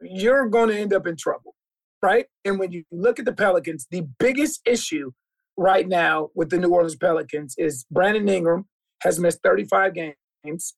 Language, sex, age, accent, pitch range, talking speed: English, male, 30-49, American, 175-235 Hz, 180 wpm